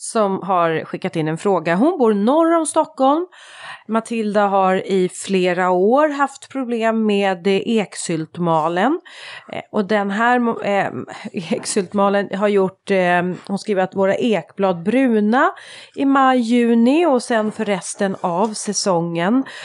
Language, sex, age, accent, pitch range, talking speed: Swedish, female, 30-49, native, 190-275 Hz, 125 wpm